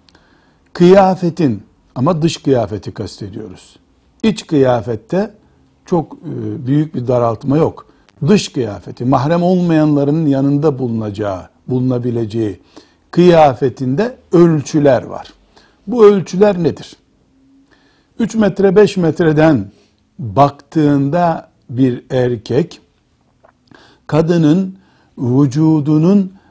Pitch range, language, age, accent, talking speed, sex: 120-165 Hz, Turkish, 60-79, native, 75 wpm, male